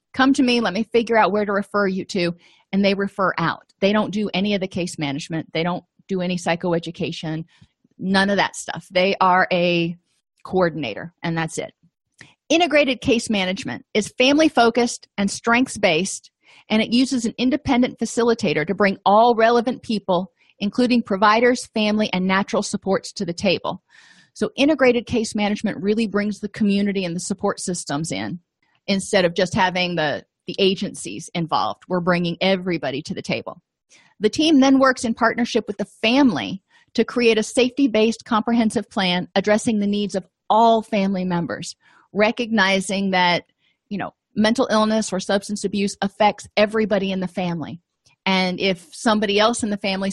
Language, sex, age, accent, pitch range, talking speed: English, female, 40-59, American, 185-220 Hz, 165 wpm